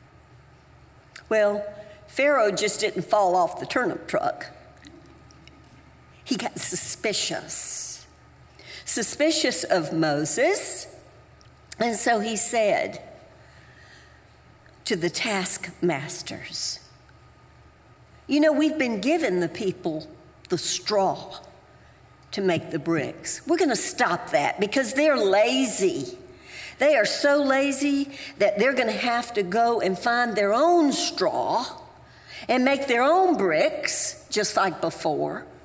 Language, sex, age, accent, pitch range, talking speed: English, female, 60-79, American, 190-295 Hz, 115 wpm